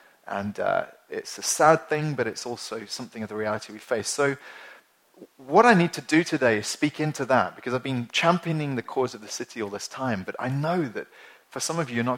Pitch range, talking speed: 115-155 Hz, 235 wpm